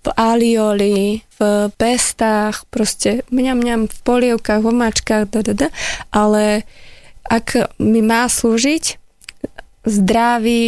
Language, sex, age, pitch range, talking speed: Slovak, female, 20-39, 210-235 Hz, 95 wpm